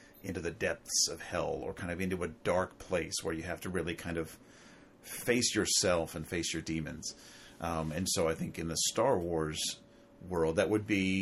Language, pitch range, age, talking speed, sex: English, 80-95 Hz, 40-59, 205 wpm, male